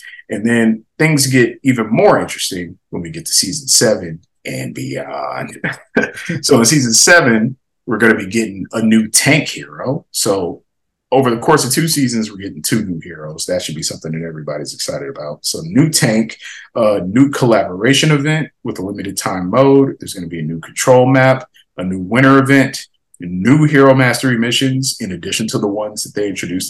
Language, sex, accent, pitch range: English, male, American, 95-130 Hz